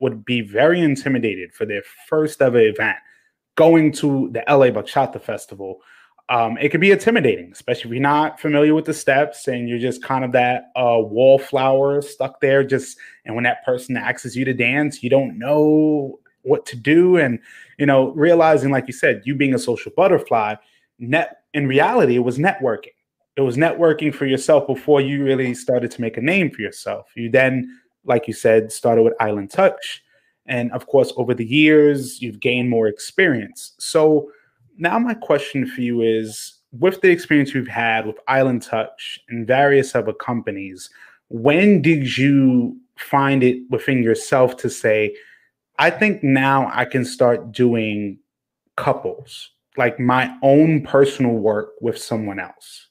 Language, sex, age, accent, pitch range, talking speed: English, male, 20-39, American, 120-150 Hz, 170 wpm